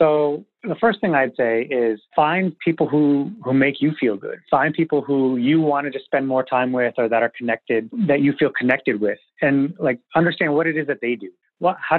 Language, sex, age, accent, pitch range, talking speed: English, male, 30-49, American, 130-170 Hz, 220 wpm